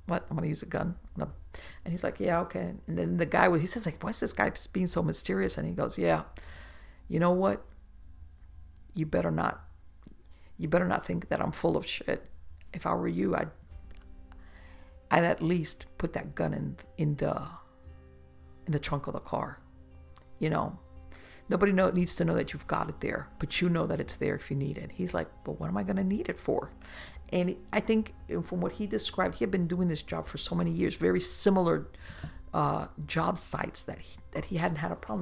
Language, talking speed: English, 220 wpm